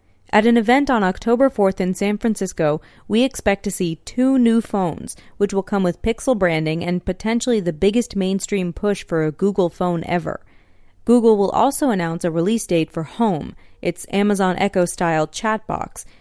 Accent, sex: American, female